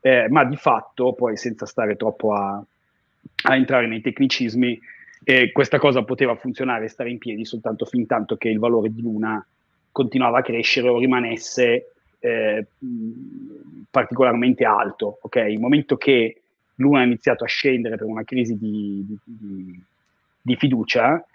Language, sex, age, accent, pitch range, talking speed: Italian, male, 30-49, native, 110-130 Hz, 155 wpm